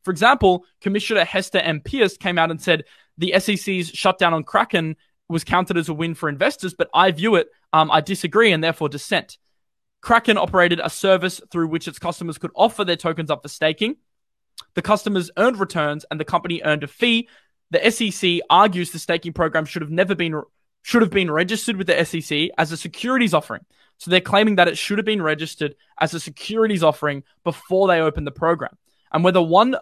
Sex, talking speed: male, 200 wpm